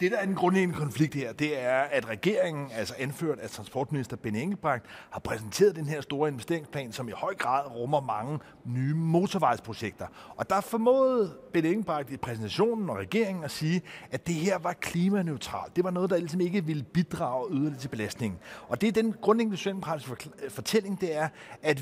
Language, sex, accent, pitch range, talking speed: Danish, male, native, 140-195 Hz, 185 wpm